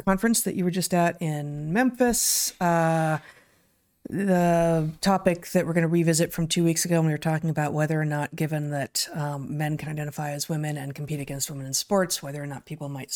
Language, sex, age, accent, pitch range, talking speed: English, female, 30-49, American, 155-200 Hz, 215 wpm